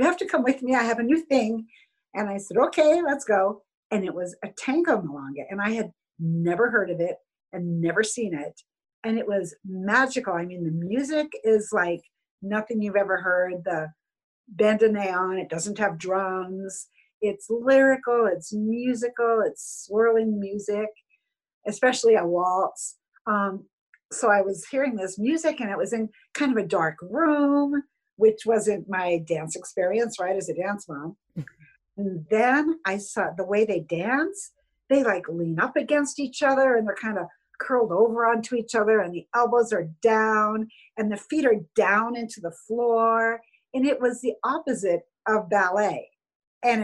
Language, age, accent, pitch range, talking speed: English, 50-69, American, 190-245 Hz, 170 wpm